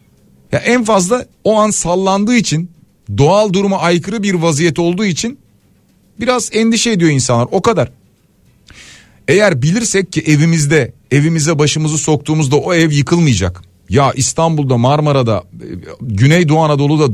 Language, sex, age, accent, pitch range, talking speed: Turkish, male, 40-59, native, 130-195 Hz, 125 wpm